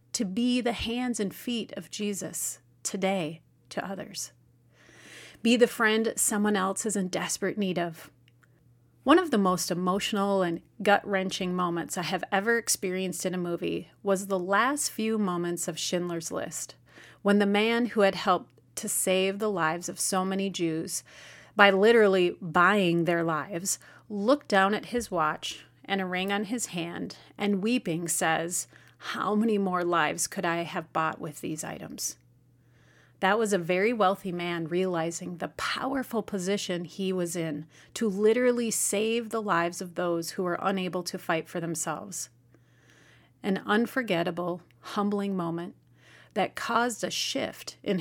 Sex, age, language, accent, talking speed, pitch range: female, 30-49, English, American, 155 wpm, 165-205 Hz